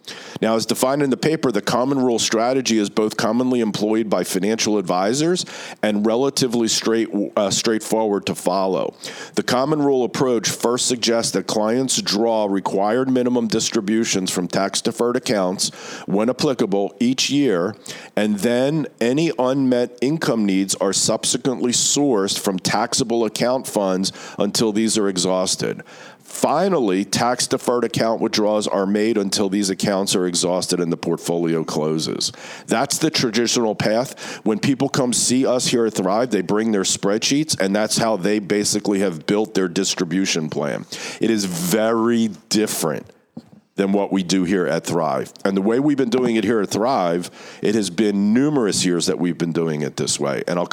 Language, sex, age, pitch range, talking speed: English, male, 40-59, 100-125 Hz, 160 wpm